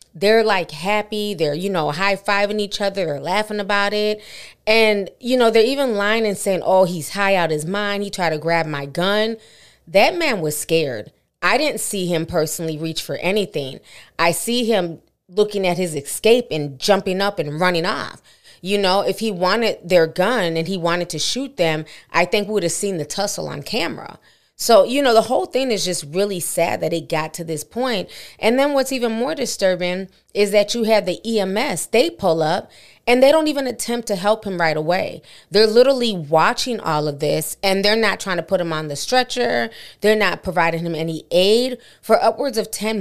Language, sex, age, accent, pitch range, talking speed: English, female, 30-49, American, 165-210 Hz, 210 wpm